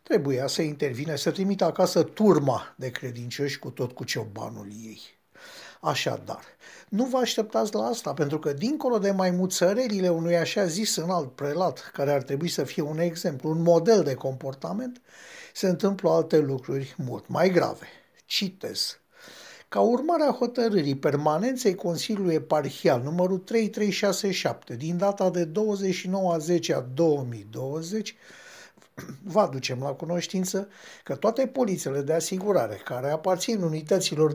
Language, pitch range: Romanian, 140-195 Hz